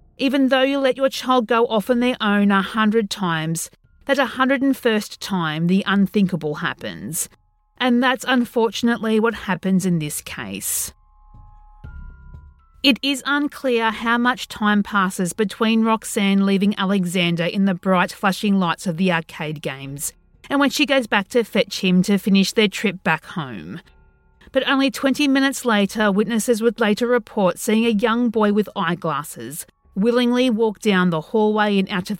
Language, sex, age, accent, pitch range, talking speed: English, female, 40-59, Australian, 170-240 Hz, 160 wpm